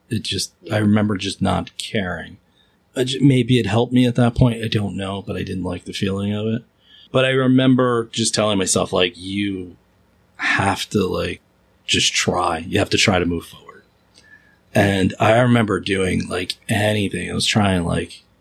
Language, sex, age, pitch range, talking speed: English, male, 30-49, 90-115 Hz, 180 wpm